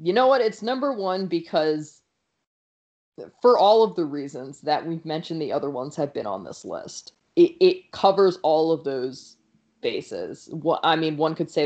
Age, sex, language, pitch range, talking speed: 20-39, female, English, 150-200 Hz, 180 wpm